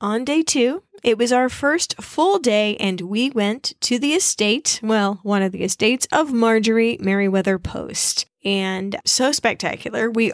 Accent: American